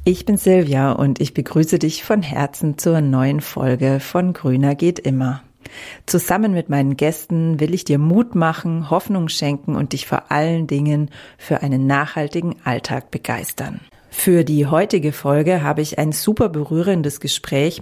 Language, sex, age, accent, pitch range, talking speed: German, female, 40-59, German, 145-170 Hz, 160 wpm